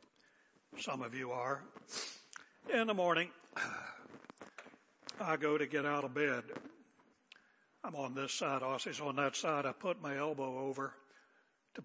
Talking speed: 140 wpm